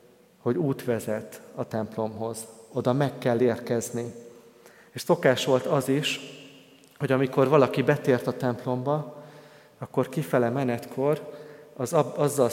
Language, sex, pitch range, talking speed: Hungarian, male, 120-145 Hz, 120 wpm